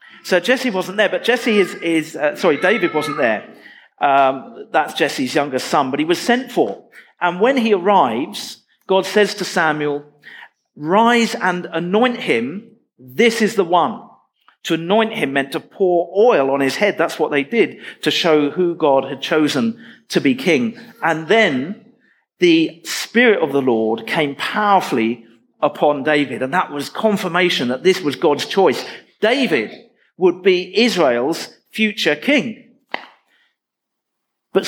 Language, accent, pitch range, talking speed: English, British, 150-220 Hz, 155 wpm